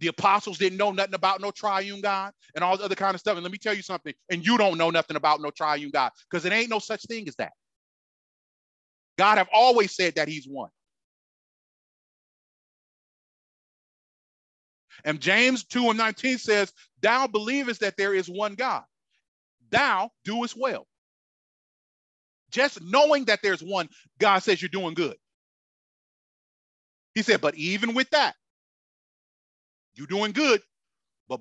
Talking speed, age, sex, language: 155 wpm, 40-59, male, English